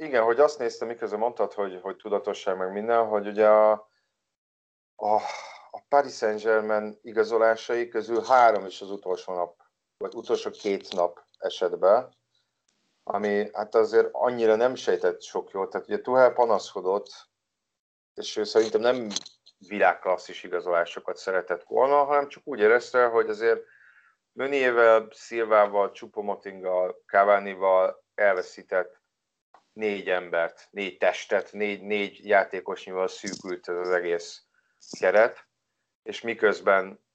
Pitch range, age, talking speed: 95-135 Hz, 30-49, 125 wpm